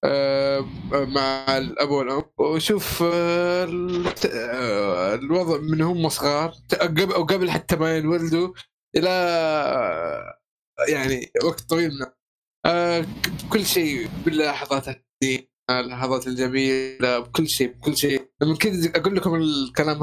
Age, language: 20-39, Arabic